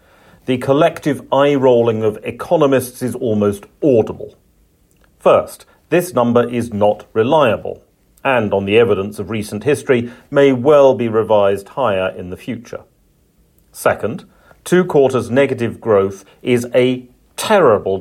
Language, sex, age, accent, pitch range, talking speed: English, male, 40-59, British, 100-135 Hz, 120 wpm